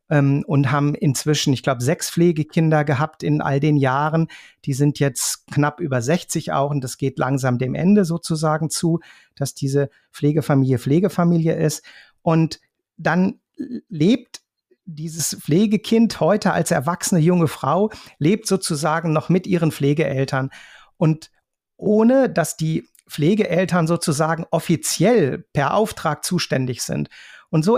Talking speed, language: 130 wpm, German